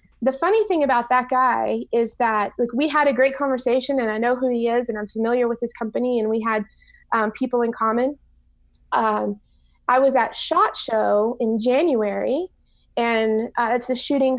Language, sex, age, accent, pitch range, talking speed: English, female, 30-49, American, 225-310 Hz, 190 wpm